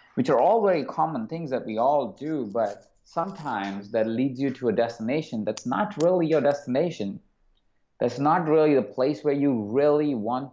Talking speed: 180 wpm